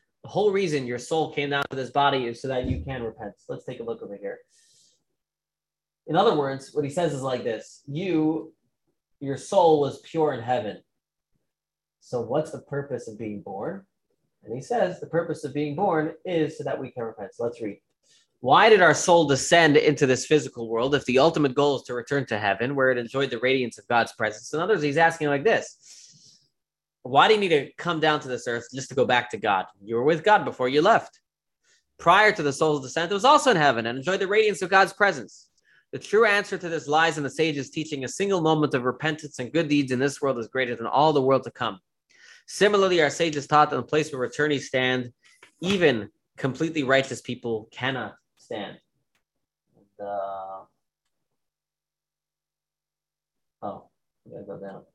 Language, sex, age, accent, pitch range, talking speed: English, male, 20-39, American, 125-160 Hz, 205 wpm